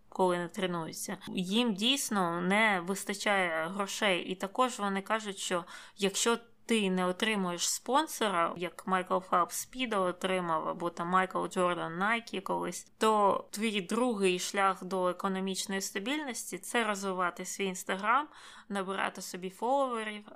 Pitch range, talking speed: 190-230 Hz, 125 wpm